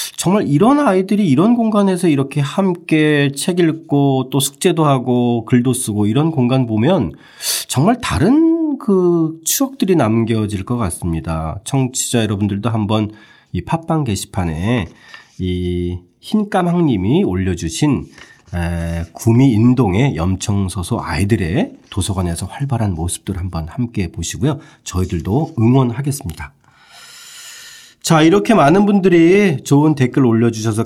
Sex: male